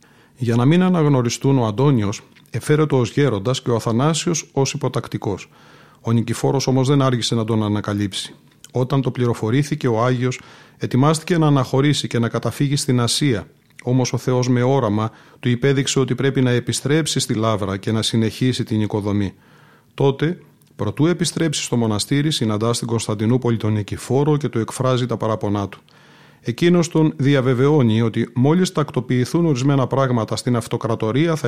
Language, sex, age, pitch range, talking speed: Greek, male, 40-59, 115-140 Hz, 155 wpm